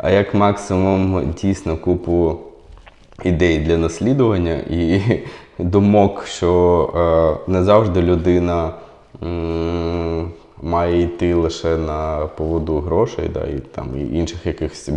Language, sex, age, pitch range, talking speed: Ukrainian, male, 20-39, 80-95 Hz, 115 wpm